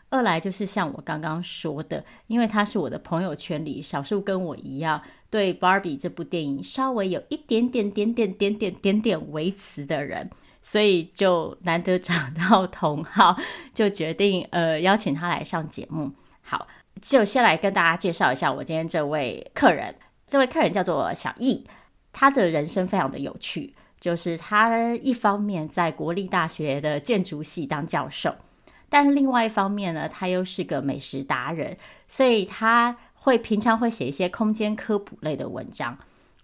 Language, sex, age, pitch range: Chinese, female, 30-49, 165-215 Hz